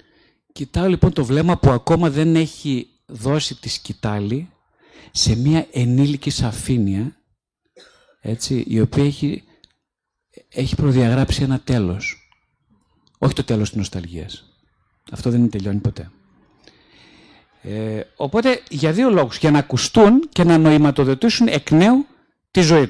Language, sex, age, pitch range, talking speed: Greek, male, 50-69, 120-185 Hz, 120 wpm